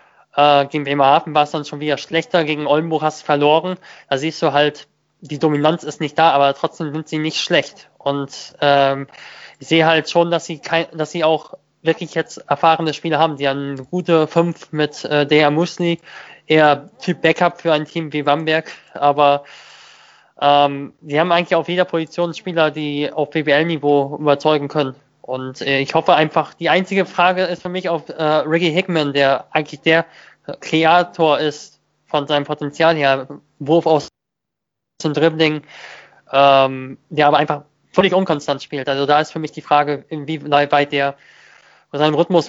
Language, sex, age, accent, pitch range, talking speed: German, male, 20-39, German, 145-165 Hz, 170 wpm